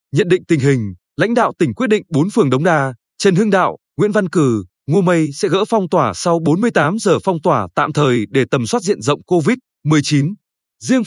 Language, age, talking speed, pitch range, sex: Vietnamese, 20-39, 210 wpm, 150-200 Hz, male